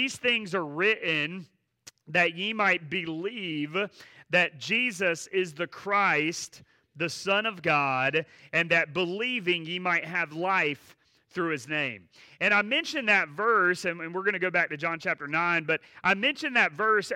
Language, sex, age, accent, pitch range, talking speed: English, male, 30-49, American, 170-220 Hz, 165 wpm